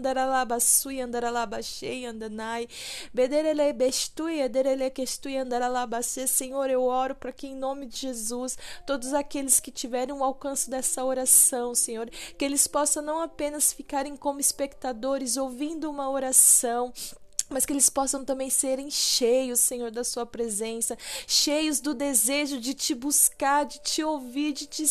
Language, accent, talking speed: Portuguese, Brazilian, 135 wpm